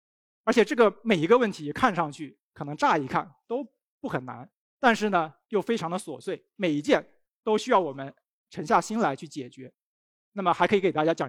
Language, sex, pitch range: Chinese, male, 150-210 Hz